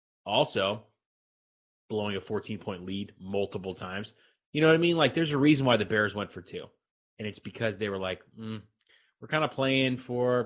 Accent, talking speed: American, 200 wpm